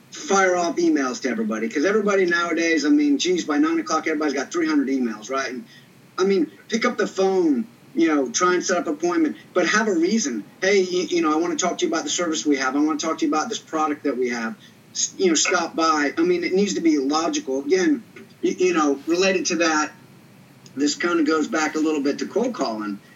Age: 30-49